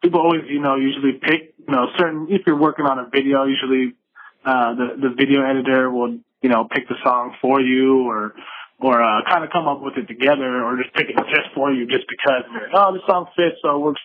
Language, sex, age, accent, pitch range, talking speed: English, male, 20-39, American, 135-170 Hz, 240 wpm